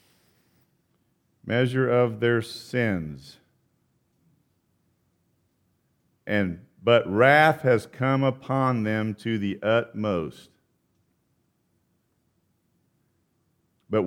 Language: English